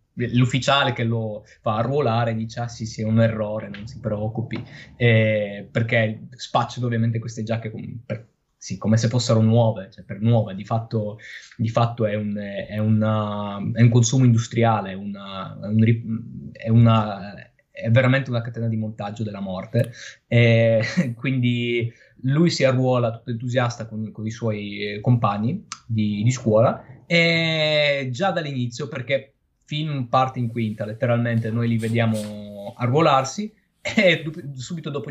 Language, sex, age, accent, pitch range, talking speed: Italian, male, 20-39, native, 110-125 Hz, 150 wpm